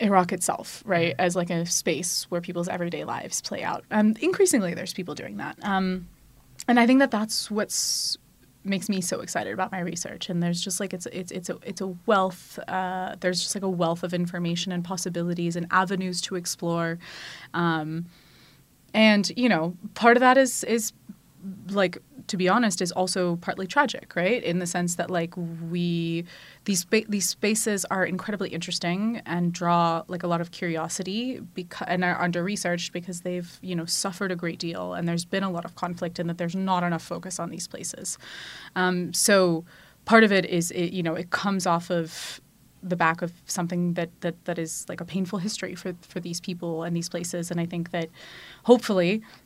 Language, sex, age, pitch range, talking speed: English, female, 20-39, 170-195 Hz, 200 wpm